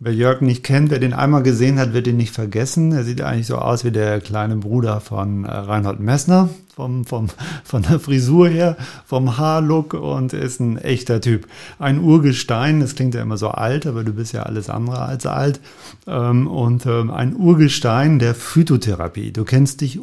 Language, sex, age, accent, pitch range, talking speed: German, male, 40-59, German, 115-145 Hz, 185 wpm